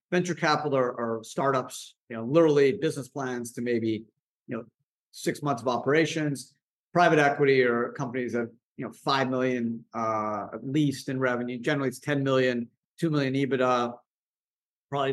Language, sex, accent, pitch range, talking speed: English, male, American, 120-160 Hz, 155 wpm